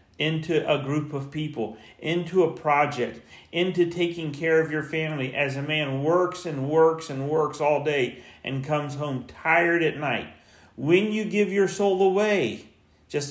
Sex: male